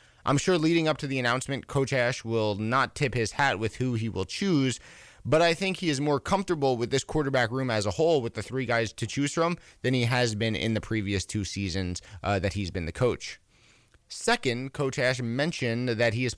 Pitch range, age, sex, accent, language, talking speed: 110-140 Hz, 20-39, male, American, English, 225 wpm